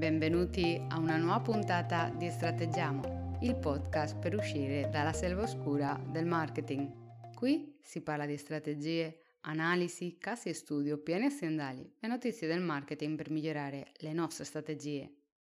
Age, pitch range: 20-39, 145-180 Hz